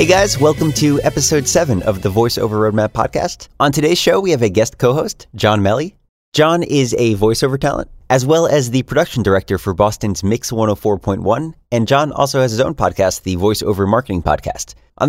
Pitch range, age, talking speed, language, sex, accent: 100-145 Hz, 30-49, 195 wpm, English, male, American